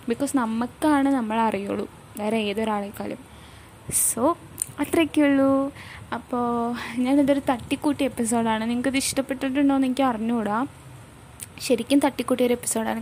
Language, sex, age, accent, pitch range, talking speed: Malayalam, female, 20-39, native, 215-280 Hz, 95 wpm